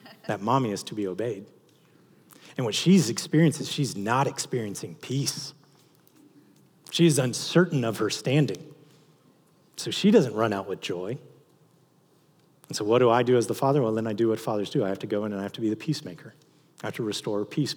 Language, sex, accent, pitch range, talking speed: English, male, American, 110-155 Hz, 205 wpm